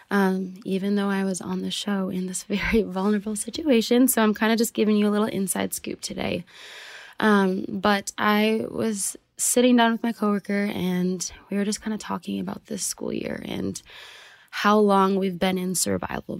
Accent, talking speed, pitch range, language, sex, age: American, 190 wpm, 175-205 Hz, English, female, 20-39